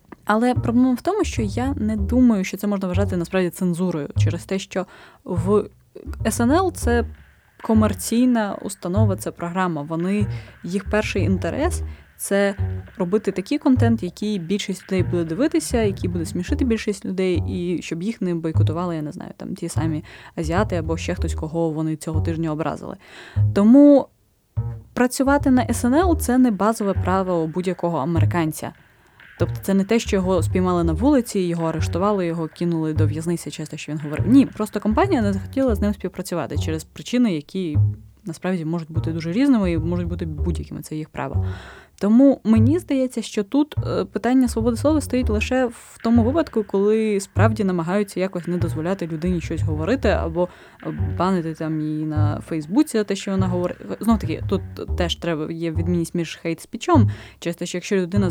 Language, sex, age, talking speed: Ukrainian, female, 20-39, 165 wpm